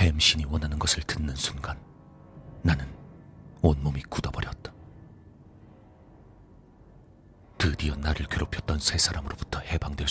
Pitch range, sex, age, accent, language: 75-105 Hz, male, 40-59, native, Korean